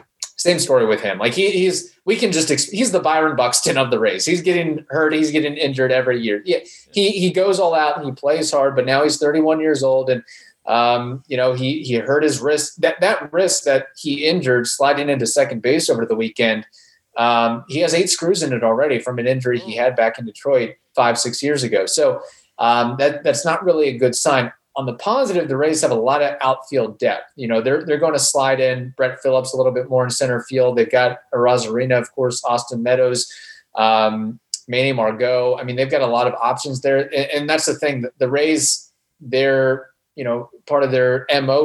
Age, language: 30-49, English